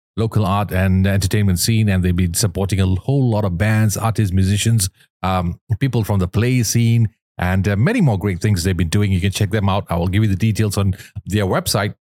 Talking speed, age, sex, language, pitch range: 225 wpm, 40-59, male, English, 100-125 Hz